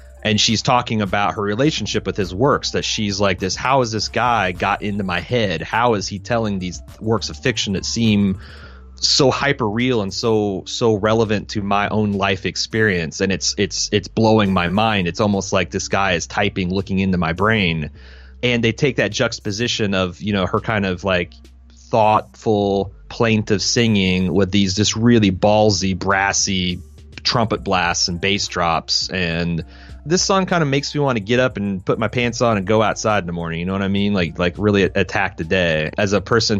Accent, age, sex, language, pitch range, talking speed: American, 30-49, male, English, 90-110 Hz, 200 wpm